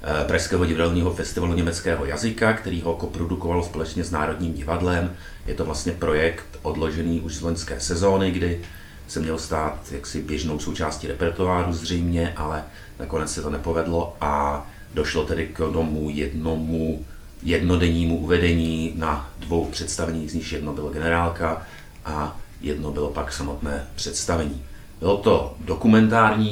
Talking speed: 135 wpm